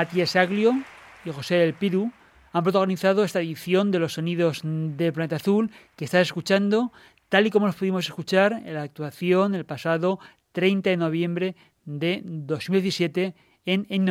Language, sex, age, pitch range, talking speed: Spanish, male, 30-49, 160-190 Hz, 150 wpm